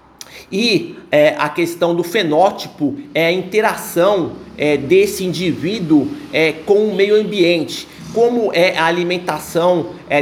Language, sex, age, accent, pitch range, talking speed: Portuguese, male, 50-69, Brazilian, 160-190 Hz, 130 wpm